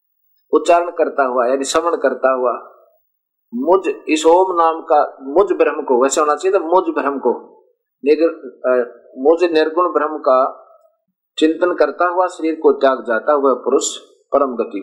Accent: native